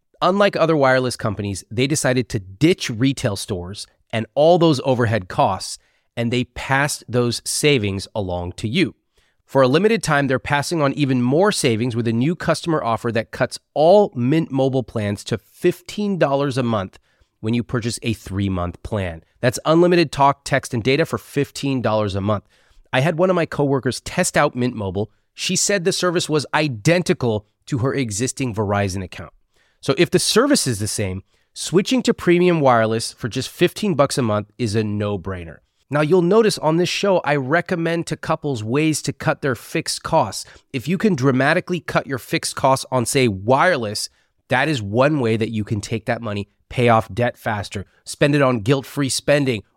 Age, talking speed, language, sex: 30-49, 180 wpm, English, male